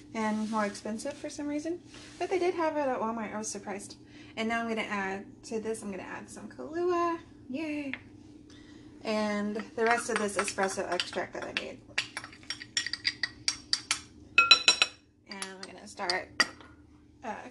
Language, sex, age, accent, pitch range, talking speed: English, female, 20-39, American, 190-230 Hz, 155 wpm